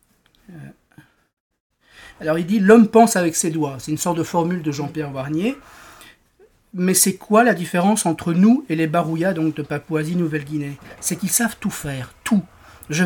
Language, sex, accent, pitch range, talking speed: French, male, French, 155-190 Hz, 175 wpm